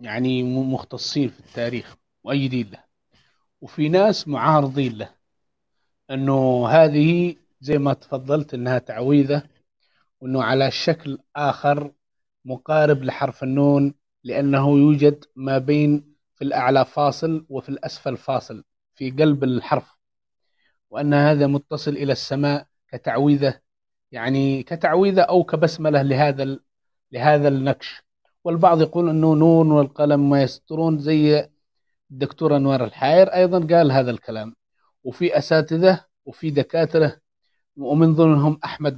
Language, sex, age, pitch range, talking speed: English, male, 30-49, 135-160 Hz, 110 wpm